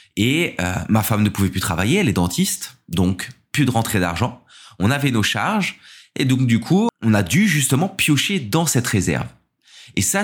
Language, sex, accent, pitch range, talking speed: Portuguese, male, French, 100-135 Hz, 200 wpm